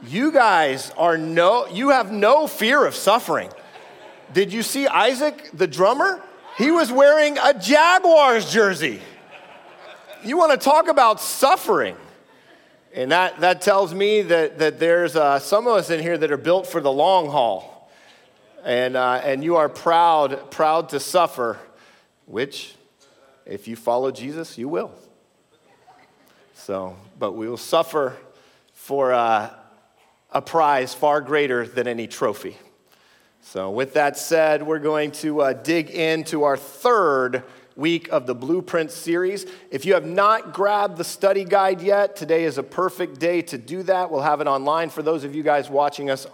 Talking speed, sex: 160 wpm, male